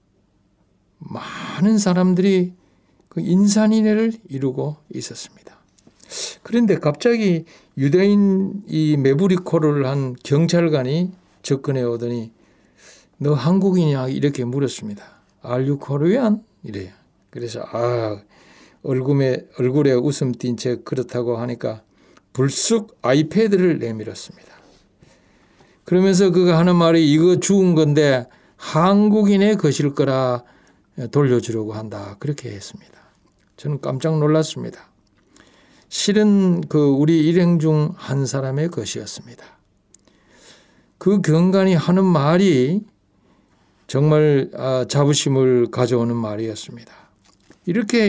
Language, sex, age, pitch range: Korean, male, 60-79, 130-195 Hz